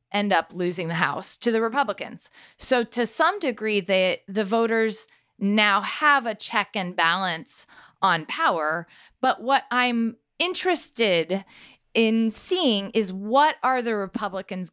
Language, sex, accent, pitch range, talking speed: English, female, American, 185-255 Hz, 140 wpm